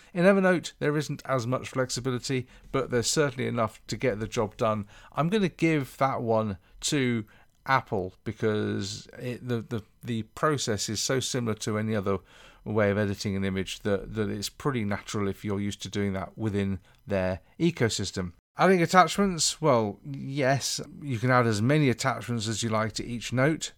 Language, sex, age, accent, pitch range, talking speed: English, male, 40-59, British, 100-130 Hz, 175 wpm